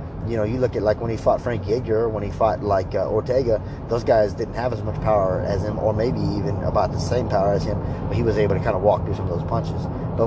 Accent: American